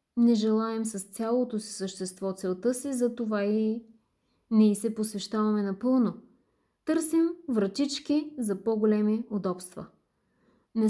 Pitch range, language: 210-250 Hz, Bulgarian